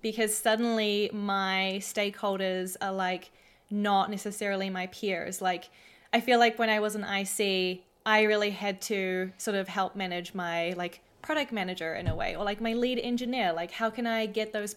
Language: English